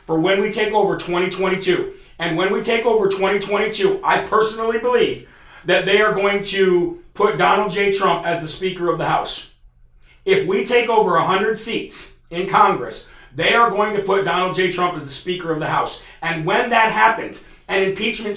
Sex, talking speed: male, 190 wpm